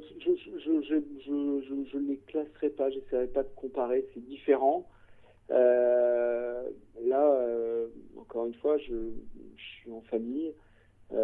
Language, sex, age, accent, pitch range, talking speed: French, male, 50-69, French, 115-160 Hz, 115 wpm